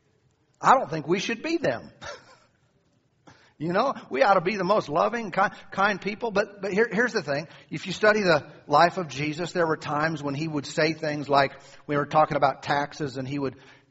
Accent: American